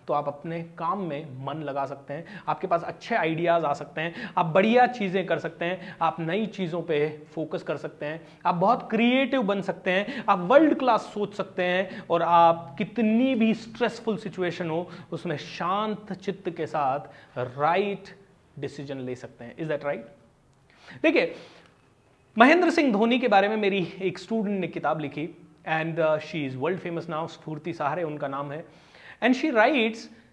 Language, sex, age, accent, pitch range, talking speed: Hindi, male, 30-49, native, 165-250 Hz, 180 wpm